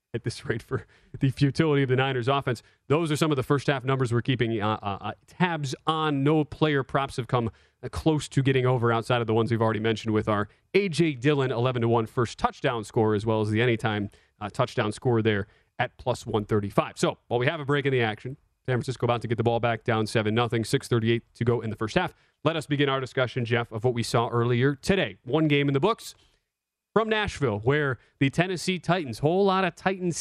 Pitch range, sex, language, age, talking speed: 115-150 Hz, male, English, 30-49, 230 wpm